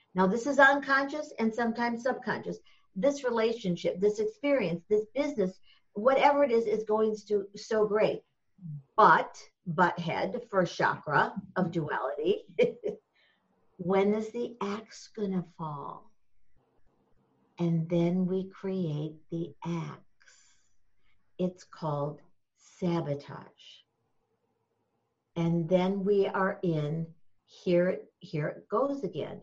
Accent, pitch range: American, 175-230 Hz